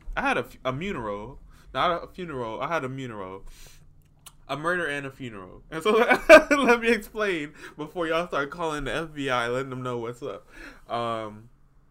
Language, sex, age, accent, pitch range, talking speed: English, male, 20-39, American, 120-165 Hz, 170 wpm